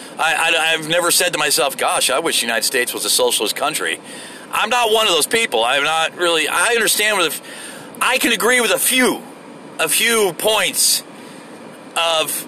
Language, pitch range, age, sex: English, 175-265 Hz, 40-59, male